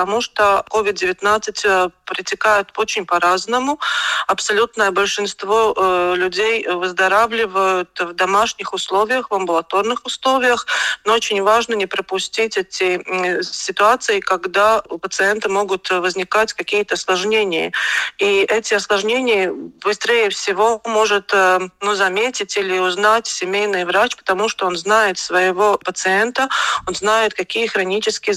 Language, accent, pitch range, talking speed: Russian, native, 185-225 Hz, 110 wpm